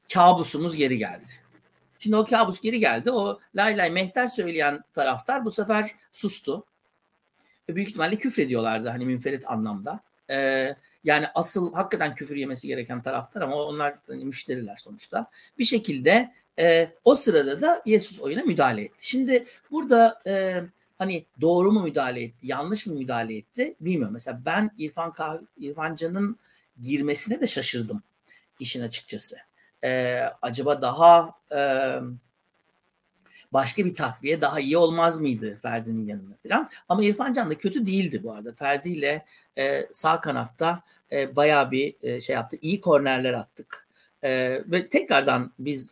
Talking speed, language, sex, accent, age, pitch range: 140 wpm, Turkish, male, native, 60-79, 130-200 Hz